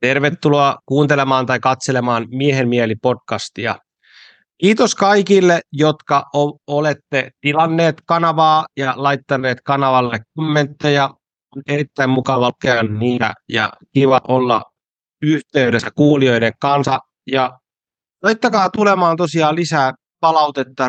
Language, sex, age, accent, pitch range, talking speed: Finnish, male, 30-49, native, 125-155 Hz, 95 wpm